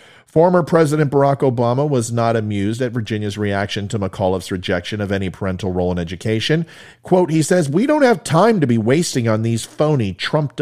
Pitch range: 105-145 Hz